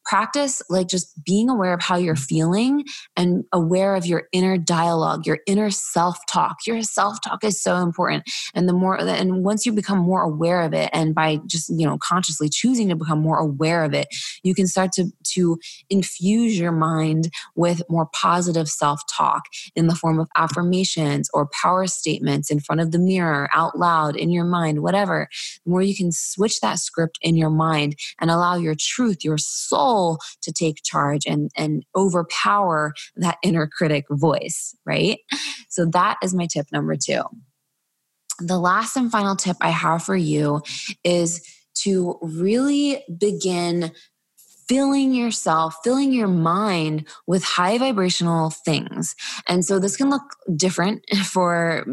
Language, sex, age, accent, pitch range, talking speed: English, female, 20-39, American, 160-195 Hz, 165 wpm